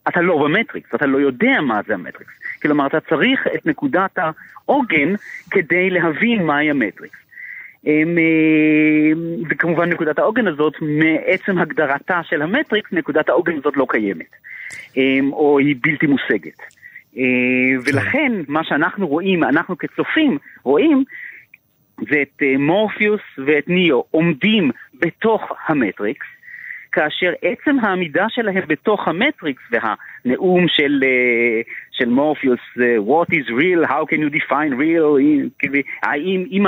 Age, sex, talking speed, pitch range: 40-59, male, 115 wpm, 150-225 Hz